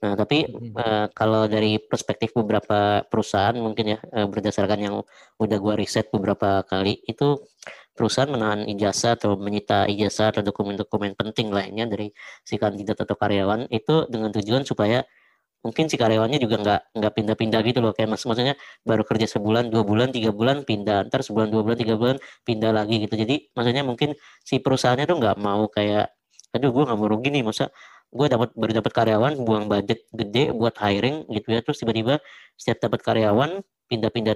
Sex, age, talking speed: female, 20-39, 175 wpm